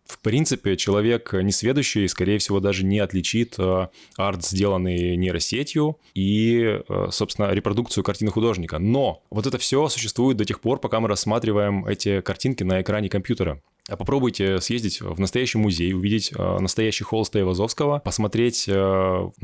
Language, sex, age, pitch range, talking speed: Russian, male, 20-39, 95-115 Hz, 135 wpm